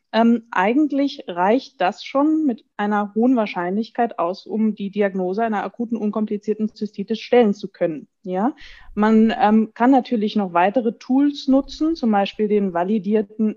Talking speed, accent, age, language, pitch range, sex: 145 wpm, German, 20-39, German, 200-245 Hz, female